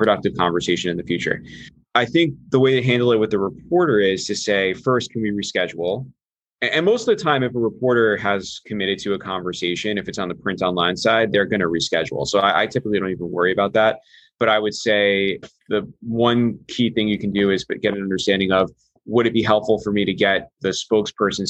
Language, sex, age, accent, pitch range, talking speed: English, male, 20-39, American, 95-115 Hz, 225 wpm